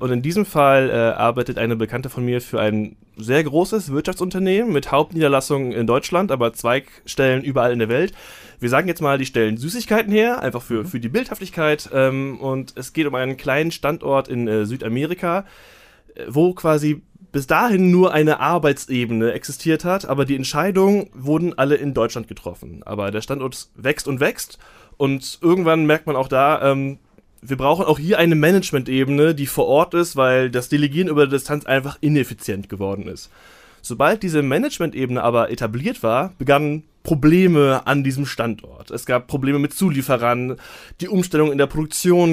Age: 20-39